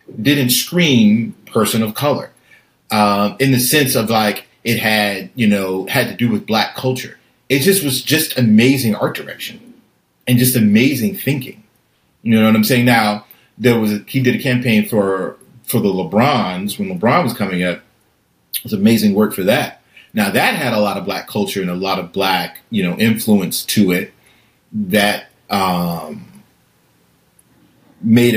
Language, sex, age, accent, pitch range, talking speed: English, male, 40-59, American, 95-125 Hz, 170 wpm